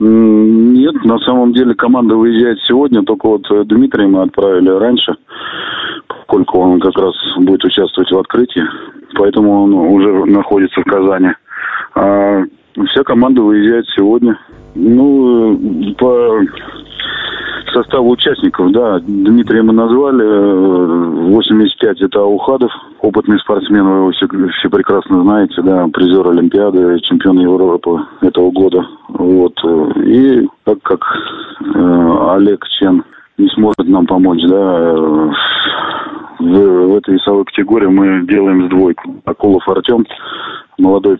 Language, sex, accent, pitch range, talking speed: Russian, male, native, 95-135 Hz, 120 wpm